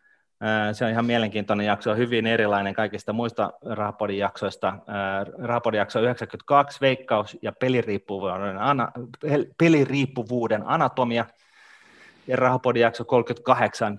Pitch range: 105-125 Hz